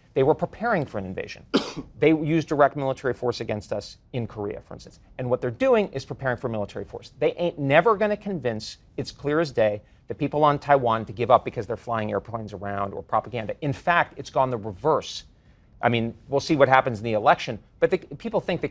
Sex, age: male, 40-59